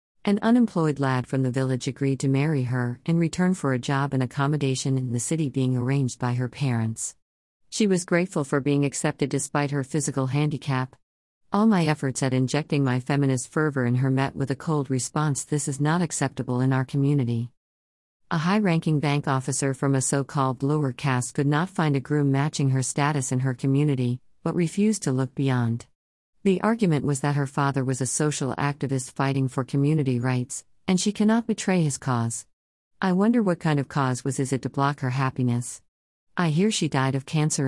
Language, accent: English, American